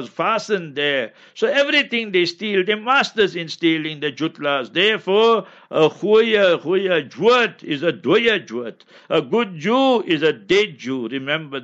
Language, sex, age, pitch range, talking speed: English, male, 60-79, 160-195 Hz, 155 wpm